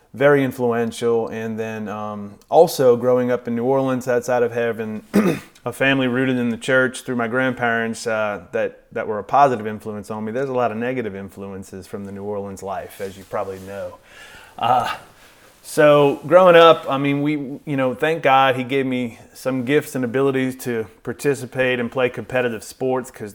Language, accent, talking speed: English, American, 185 wpm